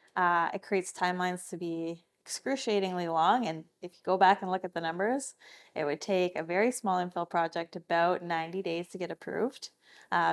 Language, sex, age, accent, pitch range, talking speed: English, female, 20-39, American, 175-215 Hz, 190 wpm